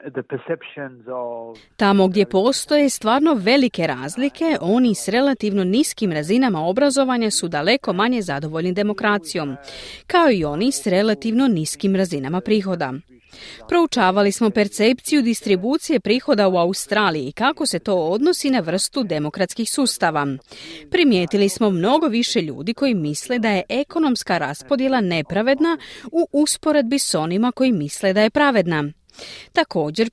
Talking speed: 125 wpm